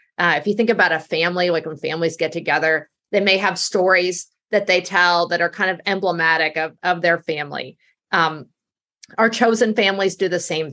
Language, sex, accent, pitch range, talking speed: English, female, American, 170-220 Hz, 195 wpm